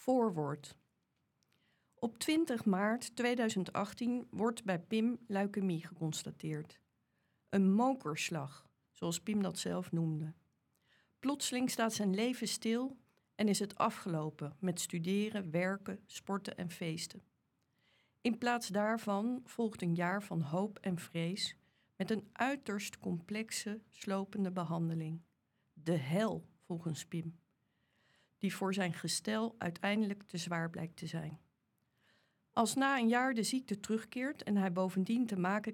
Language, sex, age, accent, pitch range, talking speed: Dutch, female, 50-69, Dutch, 170-215 Hz, 125 wpm